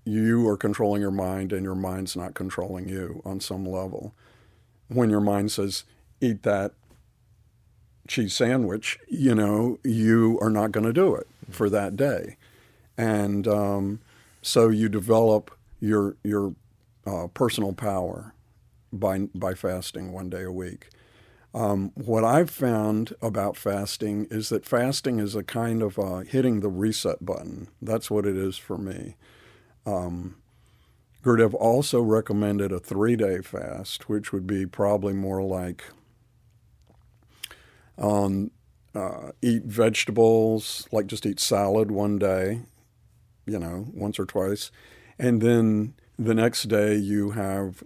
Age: 50-69